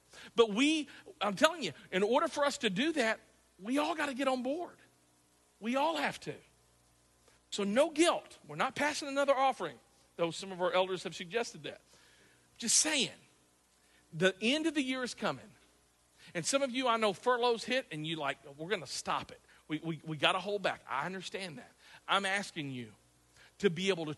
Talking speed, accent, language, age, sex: 200 wpm, American, English, 50-69, male